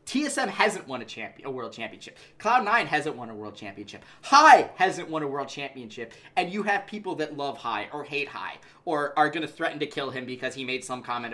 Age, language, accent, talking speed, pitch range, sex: 20-39, English, American, 220 wpm, 135-200 Hz, male